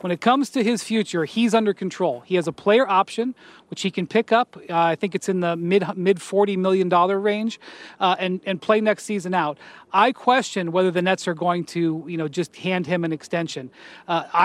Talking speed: 220 wpm